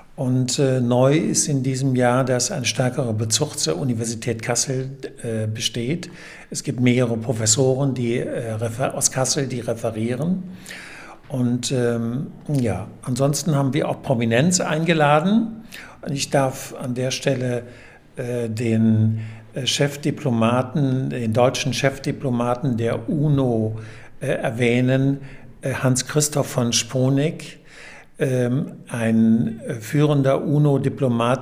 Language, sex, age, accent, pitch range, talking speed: German, male, 60-79, German, 120-145 Hz, 115 wpm